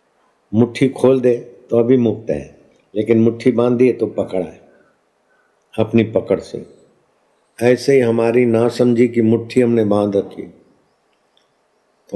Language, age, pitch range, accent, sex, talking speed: Hindi, 50-69, 105-120 Hz, native, male, 135 wpm